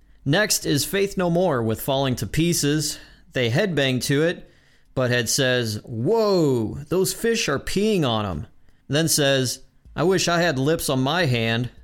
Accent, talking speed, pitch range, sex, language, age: American, 165 wpm, 110-155 Hz, male, English, 30-49